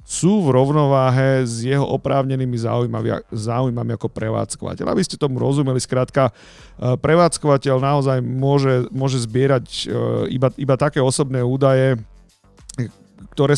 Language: Slovak